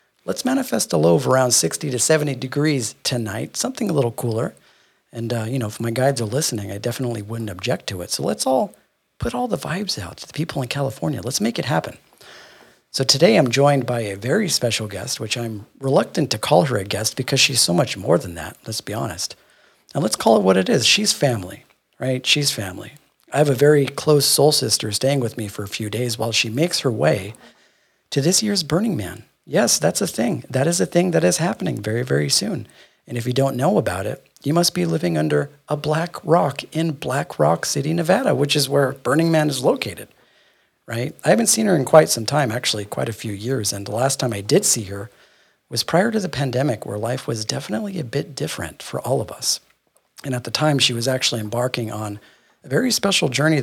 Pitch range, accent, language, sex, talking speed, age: 115-150 Hz, American, English, male, 225 wpm, 40-59